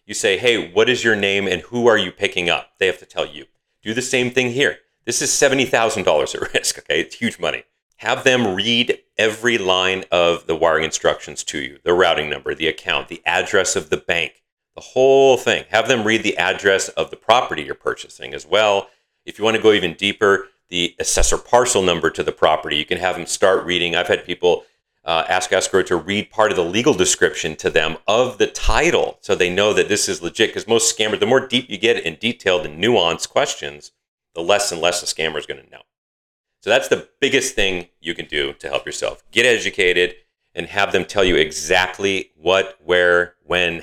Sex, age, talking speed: male, 40-59, 220 wpm